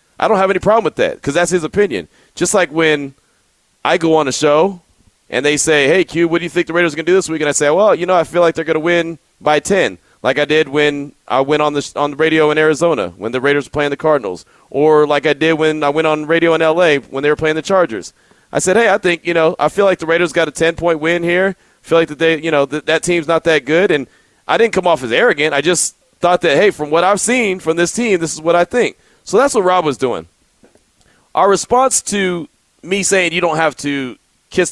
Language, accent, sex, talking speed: English, American, male, 275 wpm